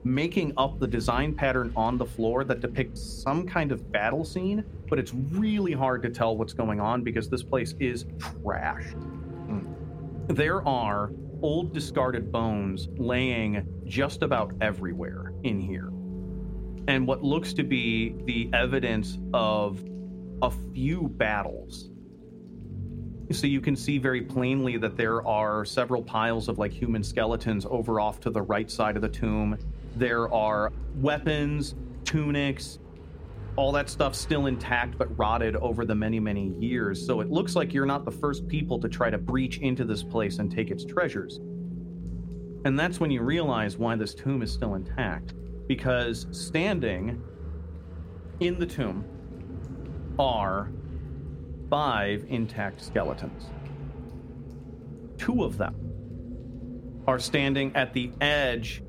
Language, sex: English, male